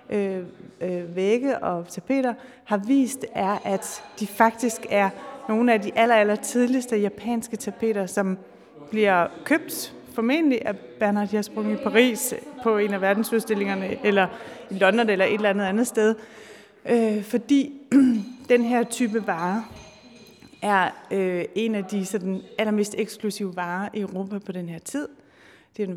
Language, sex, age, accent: Danish, female, 30-49, native